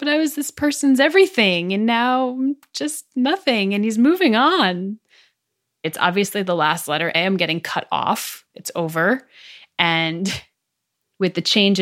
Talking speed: 150 wpm